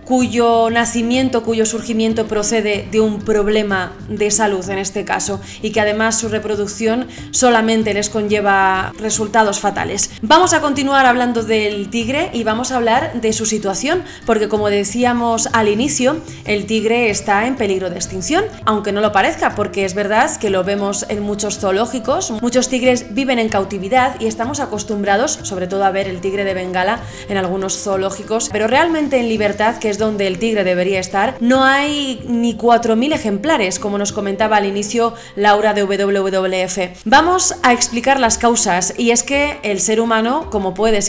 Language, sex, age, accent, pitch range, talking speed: Spanish, female, 20-39, Spanish, 205-245 Hz, 170 wpm